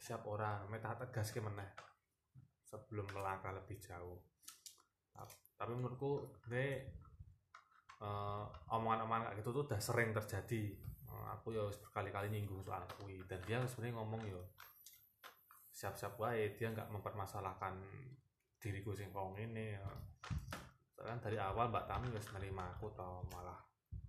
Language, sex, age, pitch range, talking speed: Indonesian, male, 20-39, 100-115 Hz, 125 wpm